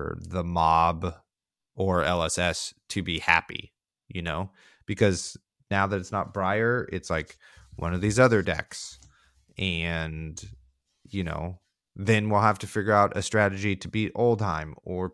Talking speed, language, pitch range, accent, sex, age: 145 wpm, English, 85-100 Hz, American, male, 30-49